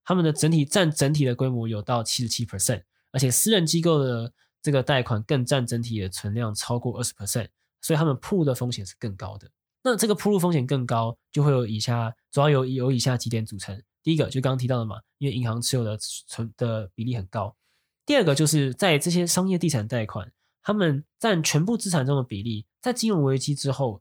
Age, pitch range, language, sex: 20-39, 115-155 Hz, Chinese, male